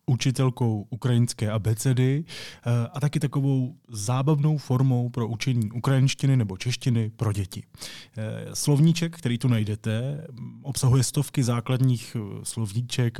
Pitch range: 115-135 Hz